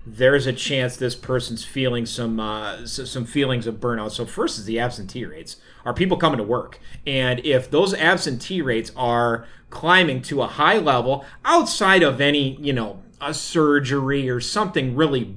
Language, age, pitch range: English, 30-49, 120-145 Hz